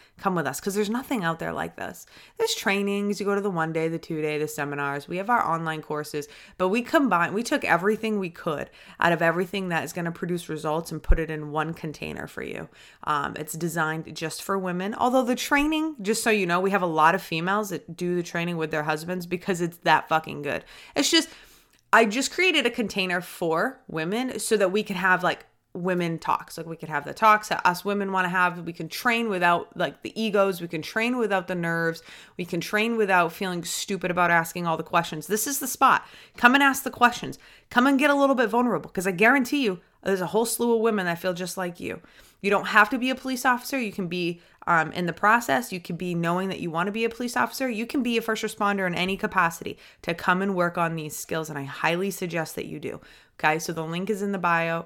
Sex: female